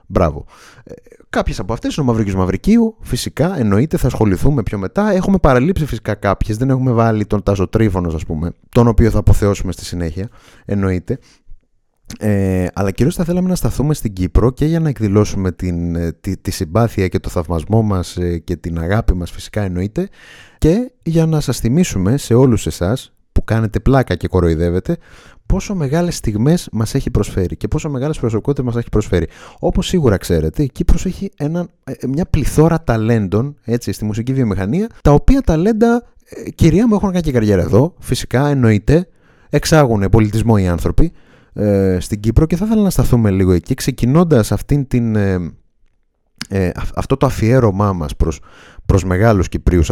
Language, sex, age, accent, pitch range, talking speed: Greek, male, 30-49, native, 95-140 Hz, 160 wpm